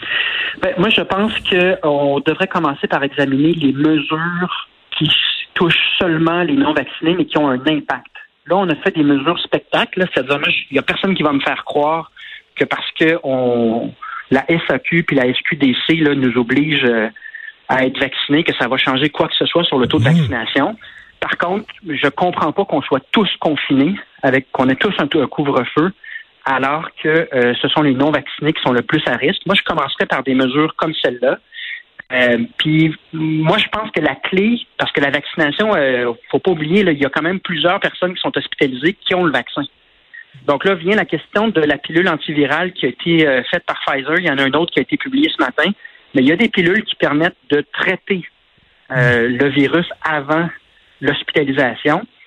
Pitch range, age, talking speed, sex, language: 145-190 Hz, 40-59, 200 wpm, male, French